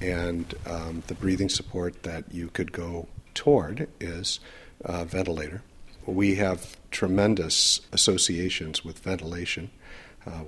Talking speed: 115 wpm